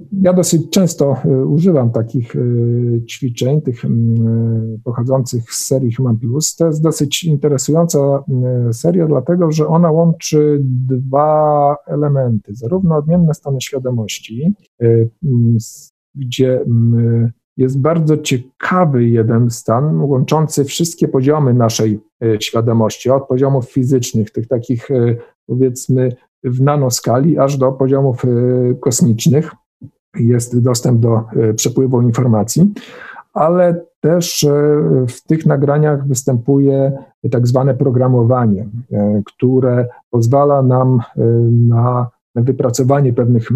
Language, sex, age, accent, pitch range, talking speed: Polish, male, 50-69, native, 120-150 Hz, 100 wpm